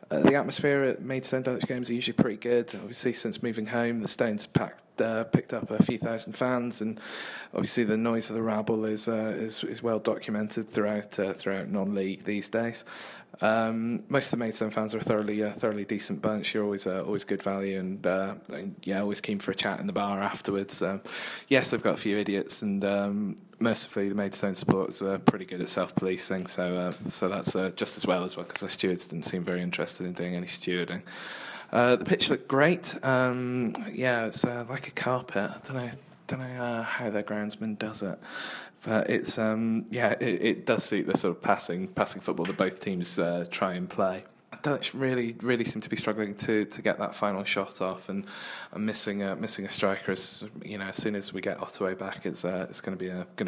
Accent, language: British, English